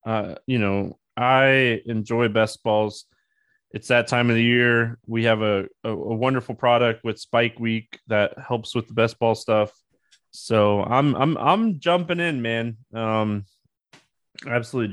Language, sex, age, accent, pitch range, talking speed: English, male, 20-39, American, 110-140 Hz, 155 wpm